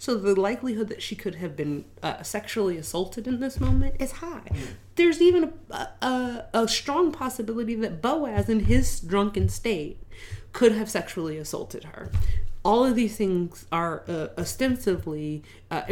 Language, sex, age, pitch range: English, female, 30-49, 140-205 Hz